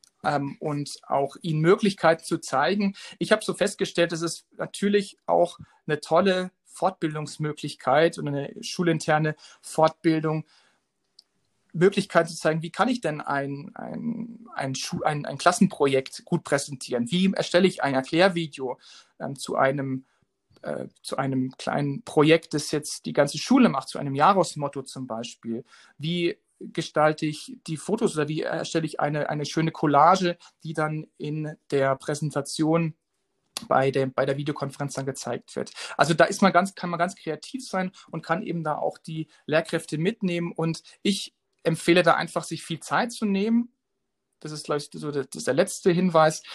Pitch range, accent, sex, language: 150-185 Hz, German, male, German